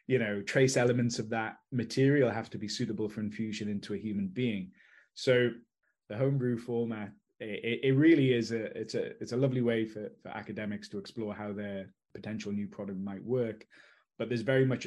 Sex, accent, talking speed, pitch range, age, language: male, British, 200 wpm, 105-115 Hz, 20-39, English